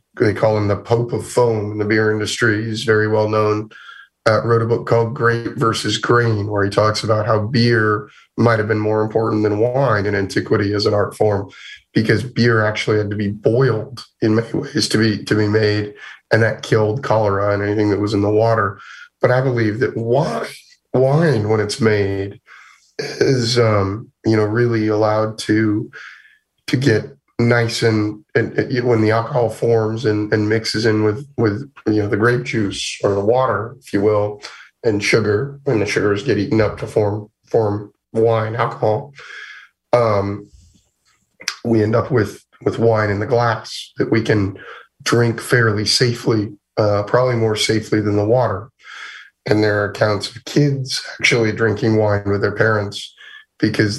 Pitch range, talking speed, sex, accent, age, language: 105-115 Hz, 180 wpm, male, American, 30-49, English